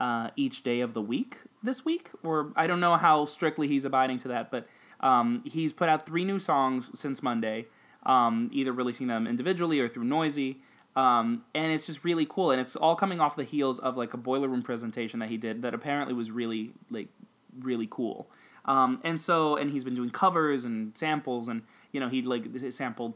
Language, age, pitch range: English, 20-39, 125-165 Hz